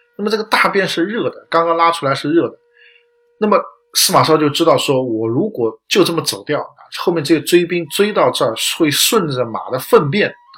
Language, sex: Chinese, male